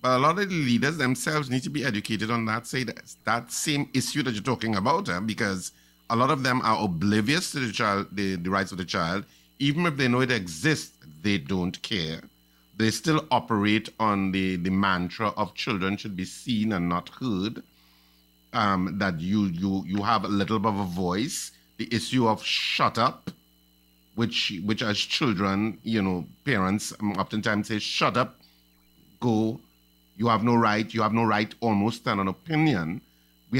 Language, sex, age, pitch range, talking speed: English, male, 50-69, 90-120 Hz, 185 wpm